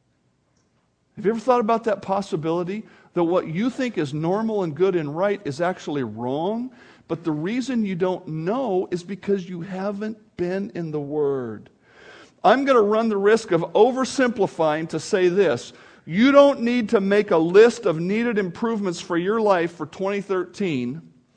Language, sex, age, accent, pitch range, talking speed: English, male, 50-69, American, 175-235 Hz, 170 wpm